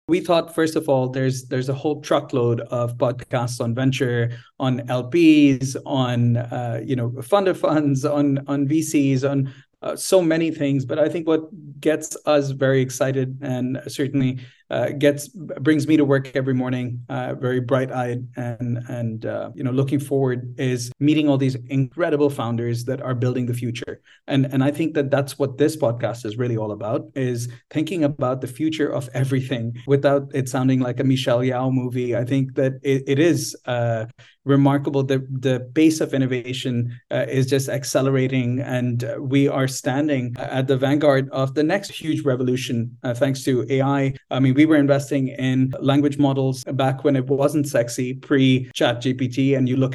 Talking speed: 185 wpm